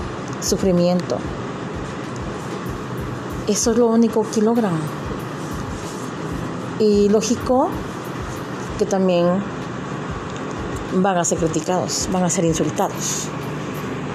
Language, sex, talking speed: Spanish, female, 80 wpm